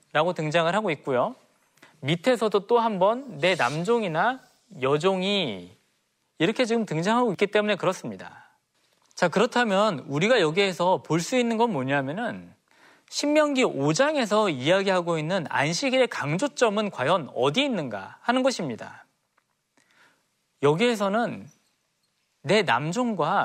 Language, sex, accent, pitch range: Korean, male, native, 165-235 Hz